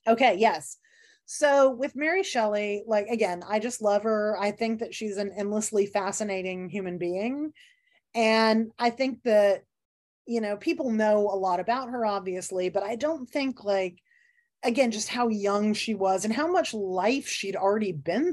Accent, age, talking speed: American, 20-39, 170 wpm